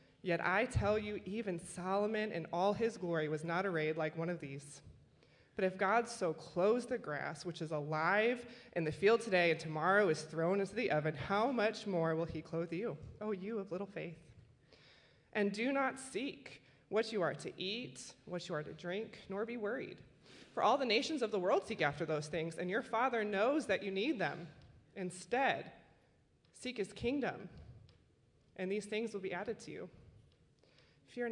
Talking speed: 190 wpm